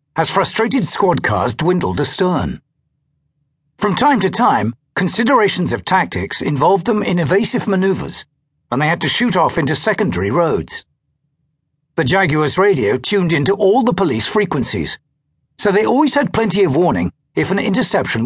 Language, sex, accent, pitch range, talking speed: English, male, British, 150-210 Hz, 150 wpm